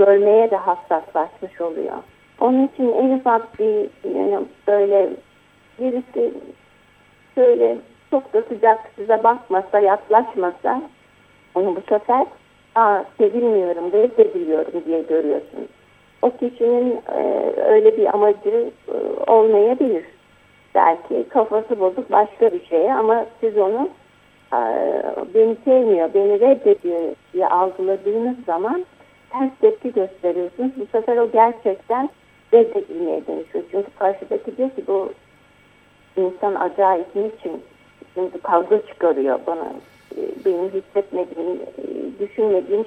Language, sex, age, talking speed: Turkish, female, 50-69, 105 wpm